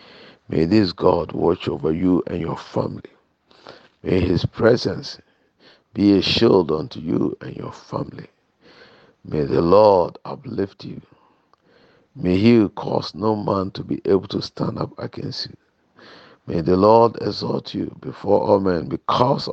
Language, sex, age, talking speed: English, male, 50-69, 145 wpm